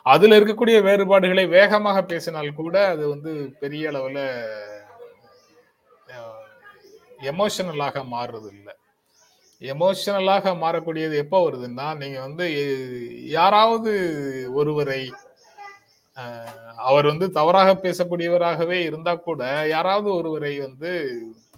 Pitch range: 140-190 Hz